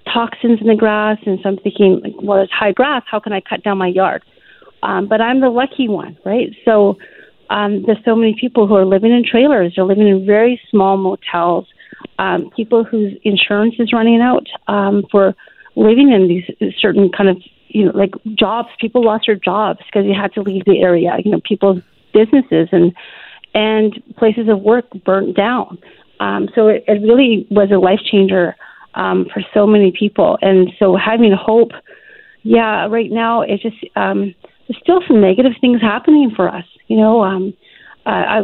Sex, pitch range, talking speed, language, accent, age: female, 195-230 Hz, 190 wpm, English, American, 40-59